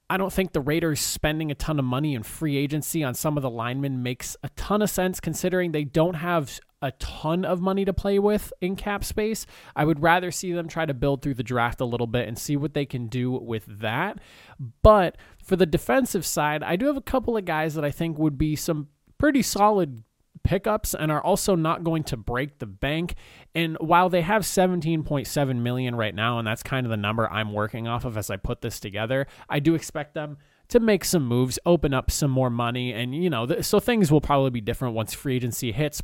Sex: male